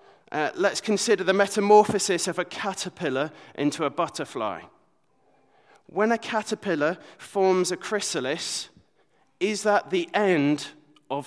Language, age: English, 30-49